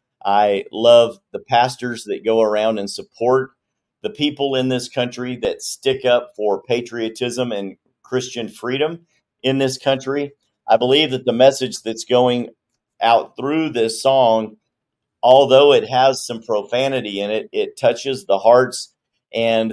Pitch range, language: 110-135 Hz, English